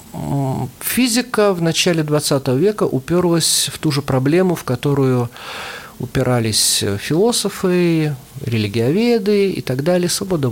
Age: 50-69